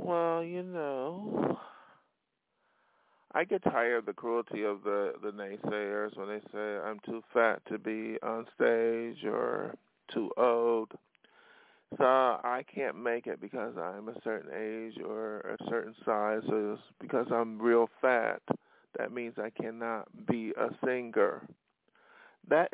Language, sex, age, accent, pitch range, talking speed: English, male, 40-59, American, 110-125 Hz, 145 wpm